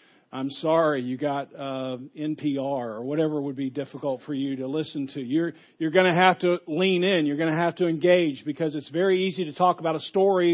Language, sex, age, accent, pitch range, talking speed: English, male, 50-69, American, 150-180 Hz, 220 wpm